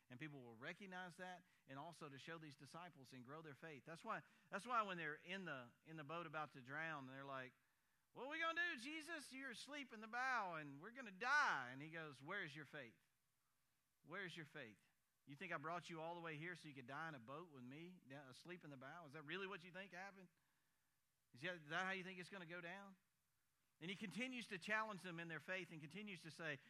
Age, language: 50-69, English